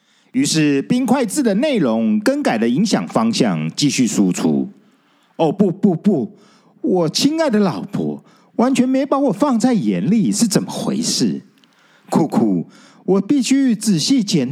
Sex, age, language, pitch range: male, 50-69, Chinese, 185-245 Hz